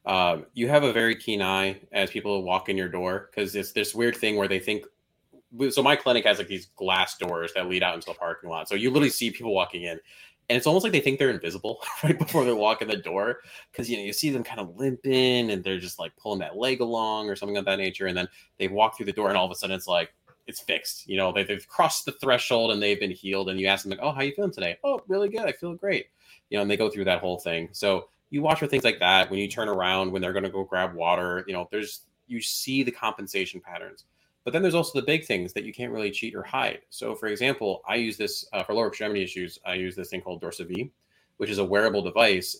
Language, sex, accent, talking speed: English, male, American, 275 wpm